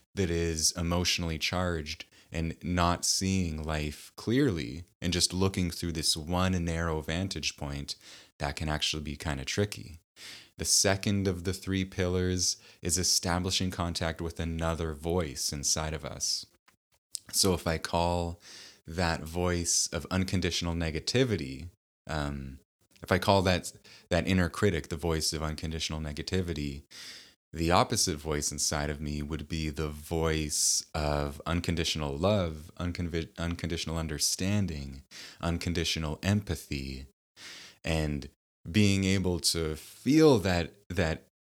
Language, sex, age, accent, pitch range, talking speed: English, male, 20-39, American, 75-95 Hz, 125 wpm